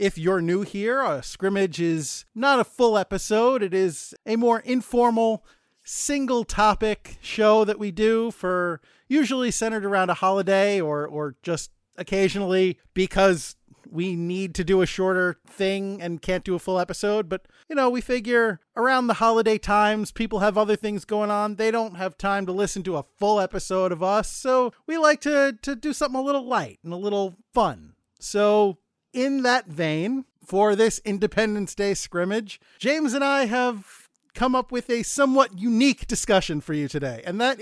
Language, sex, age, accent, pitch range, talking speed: English, male, 40-59, American, 185-235 Hz, 180 wpm